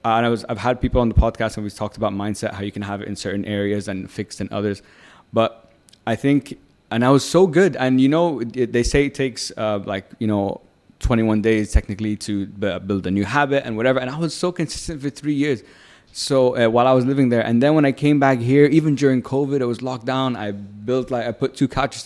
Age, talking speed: 20-39, 260 wpm